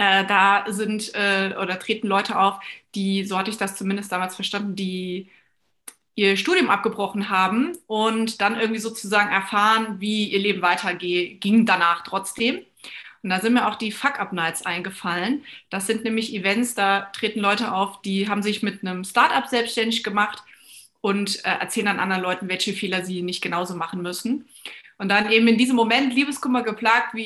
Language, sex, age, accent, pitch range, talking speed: German, female, 30-49, German, 195-230 Hz, 175 wpm